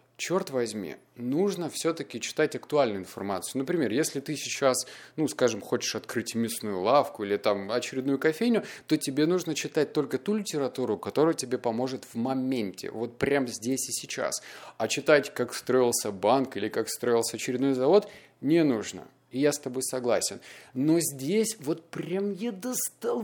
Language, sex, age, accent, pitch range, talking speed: Russian, male, 30-49, native, 115-160 Hz, 160 wpm